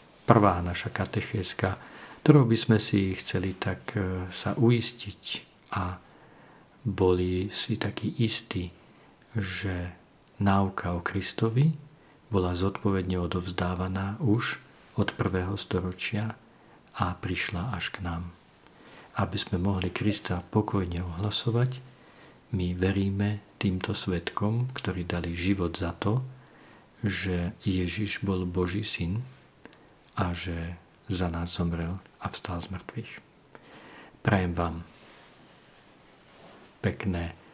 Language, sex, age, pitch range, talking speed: Slovak, male, 50-69, 90-110 Hz, 100 wpm